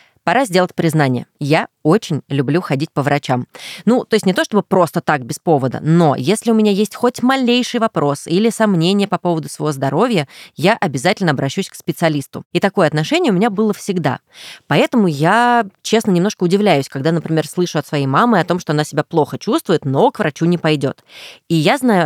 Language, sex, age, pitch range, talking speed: Russian, female, 20-39, 150-205 Hz, 195 wpm